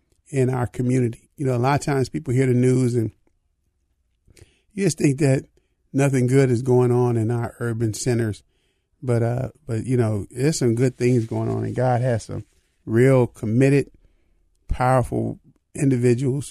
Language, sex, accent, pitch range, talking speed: English, male, American, 100-125 Hz, 165 wpm